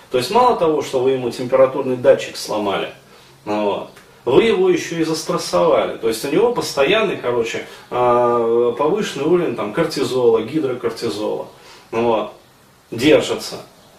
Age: 30-49